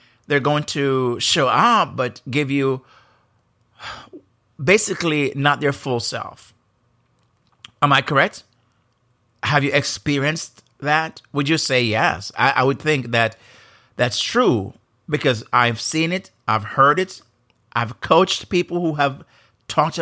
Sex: male